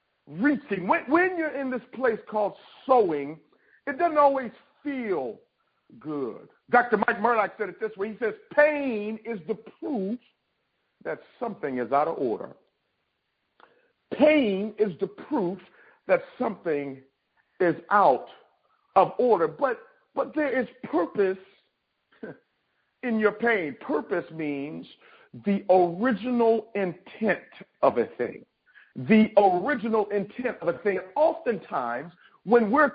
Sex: male